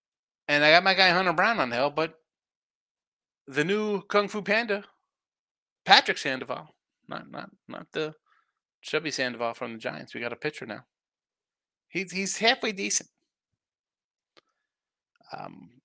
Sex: male